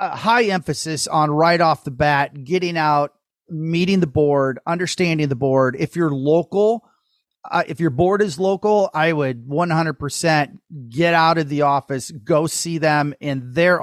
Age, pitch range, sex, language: 40-59, 140-175 Hz, male, English